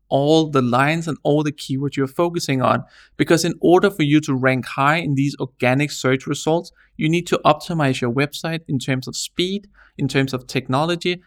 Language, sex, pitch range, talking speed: English, male, 135-165 Hz, 195 wpm